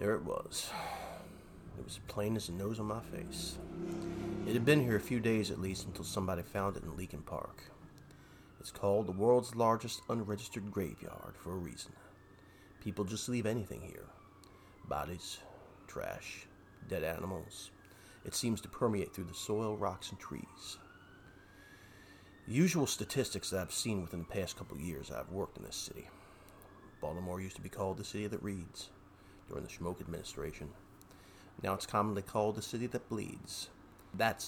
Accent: American